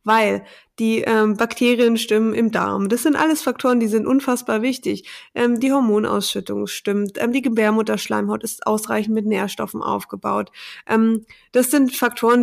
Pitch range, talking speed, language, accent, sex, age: 215-245 Hz, 150 wpm, German, German, female, 20-39